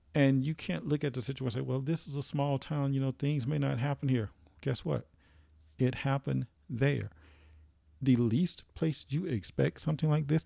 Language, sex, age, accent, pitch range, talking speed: English, male, 40-59, American, 100-140 Hz, 200 wpm